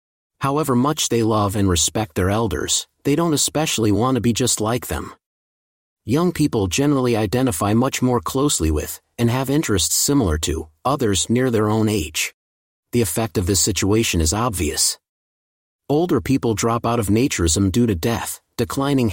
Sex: male